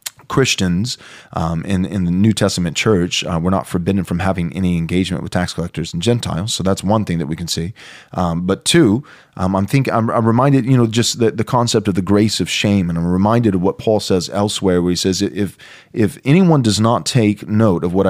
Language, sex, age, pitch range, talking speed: English, male, 30-49, 90-110 Hz, 230 wpm